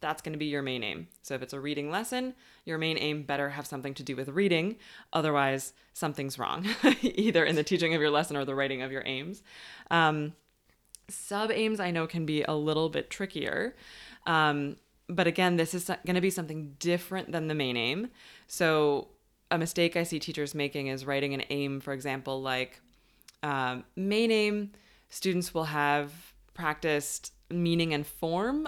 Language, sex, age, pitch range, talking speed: English, female, 20-39, 145-185 Hz, 180 wpm